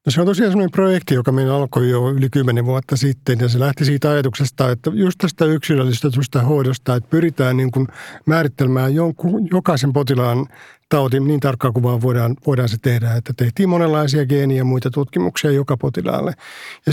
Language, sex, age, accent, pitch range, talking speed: Finnish, male, 50-69, native, 130-160 Hz, 165 wpm